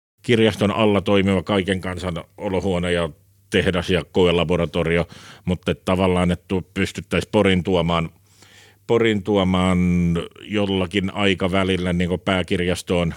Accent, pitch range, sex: native, 85-95 Hz, male